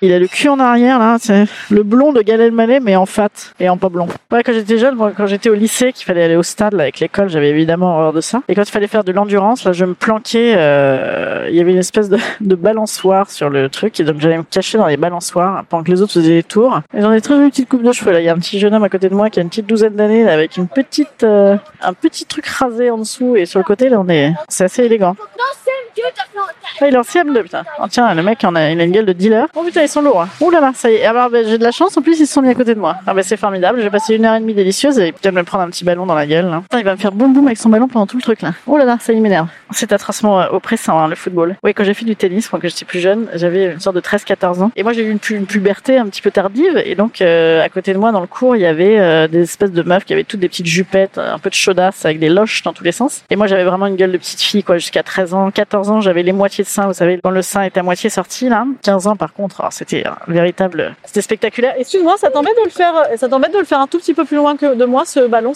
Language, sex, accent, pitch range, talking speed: French, female, French, 185-240 Hz, 310 wpm